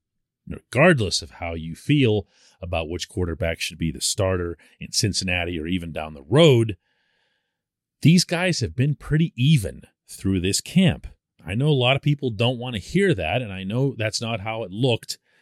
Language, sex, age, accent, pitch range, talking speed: English, male, 40-59, American, 95-150 Hz, 185 wpm